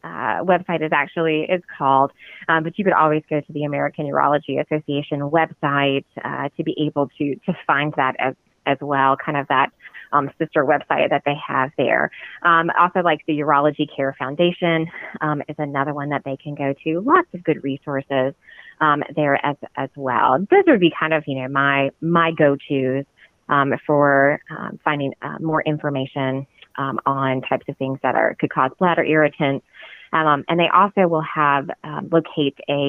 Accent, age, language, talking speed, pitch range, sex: American, 20-39, English, 185 wpm, 140-160 Hz, female